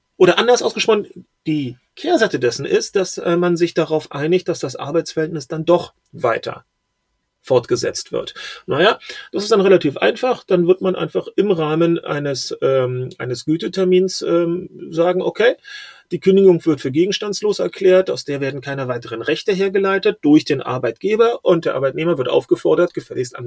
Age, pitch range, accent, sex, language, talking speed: 40-59, 140-195 Hz, German, male, German, 155 wpm